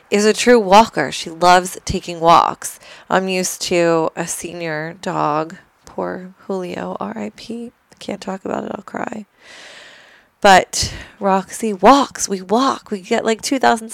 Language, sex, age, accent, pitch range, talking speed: English, female, 20-39, American, 165-210 Hz, 140 wpm